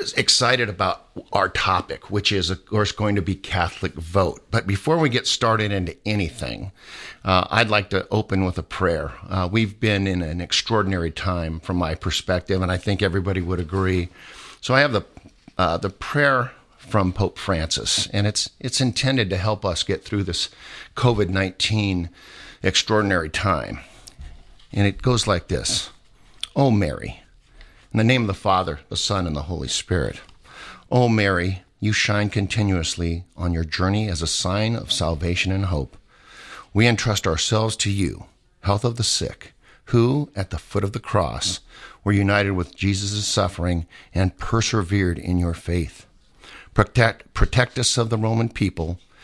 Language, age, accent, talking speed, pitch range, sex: English, 50-69, American, 165 wpm, 90-110 Hz, male